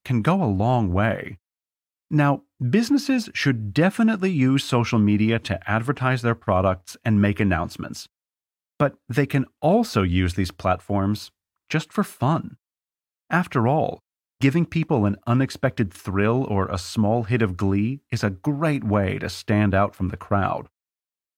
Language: English